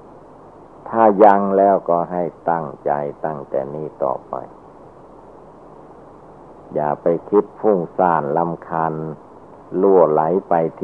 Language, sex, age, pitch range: Thai, male, 60-79, 75-100 Hz